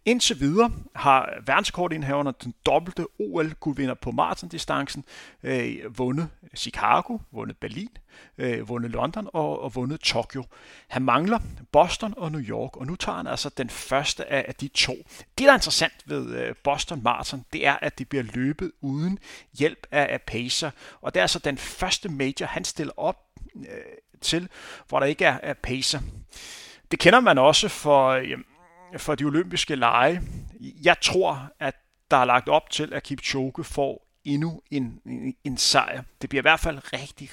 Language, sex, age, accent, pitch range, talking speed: Danish, male, 40-59, native, 130-165 Hz, 165 wpm